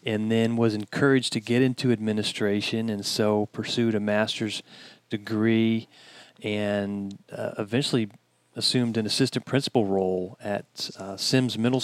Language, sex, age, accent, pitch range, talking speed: English, male, 40-59, American, 105-120 Hz, 130 wpm